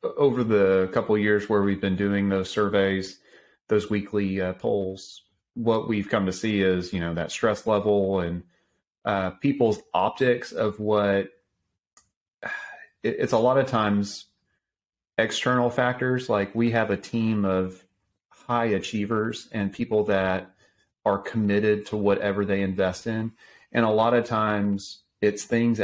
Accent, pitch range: American, 95-110 Hz